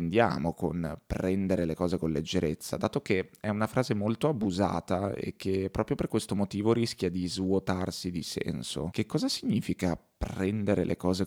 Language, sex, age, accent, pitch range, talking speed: Italian, male, 20-39, native, 90-105 Hz, 160 wpm